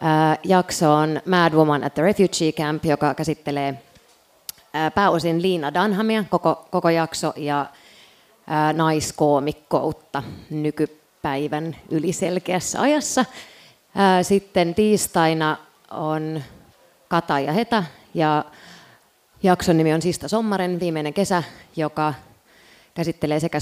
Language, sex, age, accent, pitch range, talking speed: Finnish, female, 30-49, native, 150-180 Hz, 95 wpm